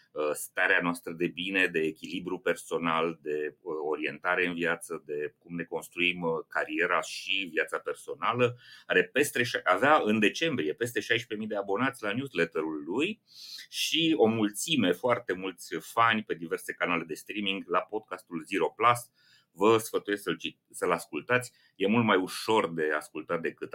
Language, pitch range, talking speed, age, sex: Romanian, 85-120 Hz, 145 wpm, 30-49, male